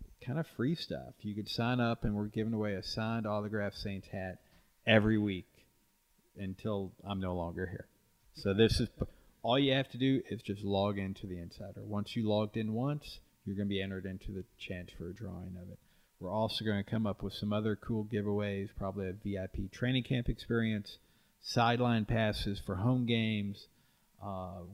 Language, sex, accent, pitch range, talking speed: English, male, American, 95-115 Hz, 190 wpm